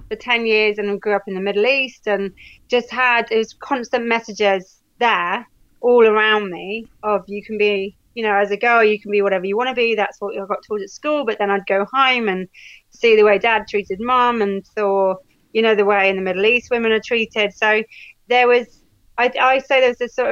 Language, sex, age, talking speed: English, female, 30-49, 235 wpm